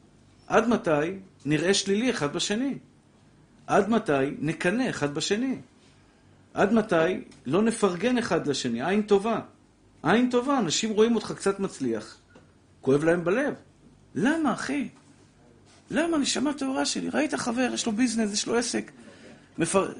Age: 50-69